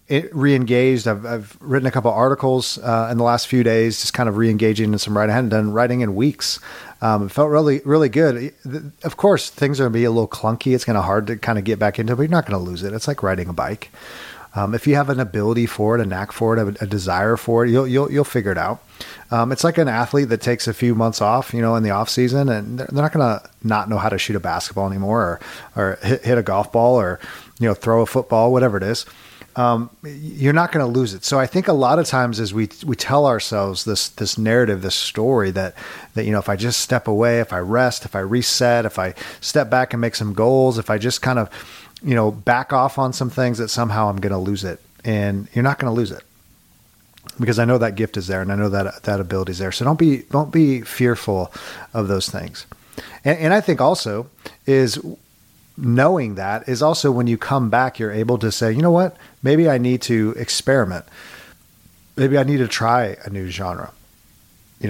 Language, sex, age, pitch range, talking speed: English, male, 30-49, 105-130 Hz, 245 wpm